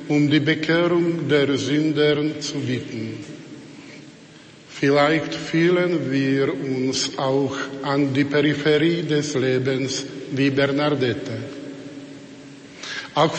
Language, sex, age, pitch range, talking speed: Slovak, male, 50-69, 140-160 Hz, 90 wpm